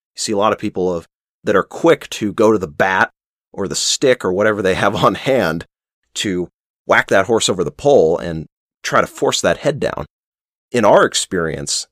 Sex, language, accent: male, English, American